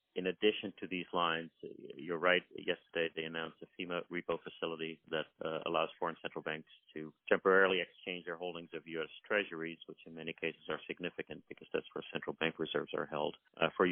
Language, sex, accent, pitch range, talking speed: English, male, American, 80-90 Hz, 190 wpm